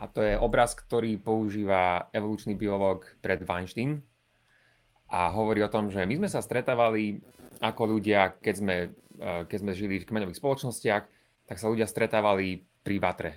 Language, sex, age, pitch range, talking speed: Slovak, male, 30-49, 95-115 Hz, 155 wpm